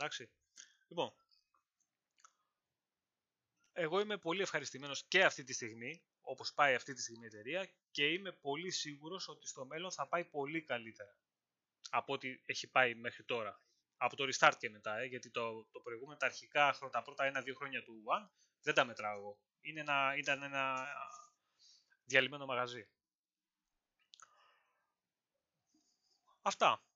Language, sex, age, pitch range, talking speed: Greek, male, 20-39, 125-165 Hz, 130 wpm